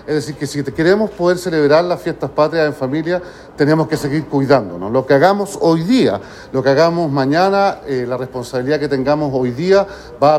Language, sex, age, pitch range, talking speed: Spanish, male, 40-59, 135-160 Hz, 195 wpm